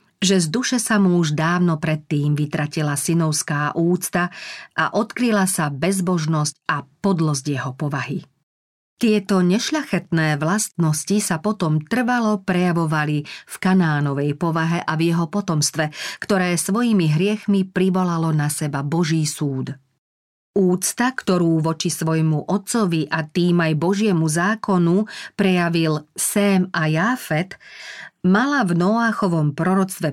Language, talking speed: Slovak, 120 wpm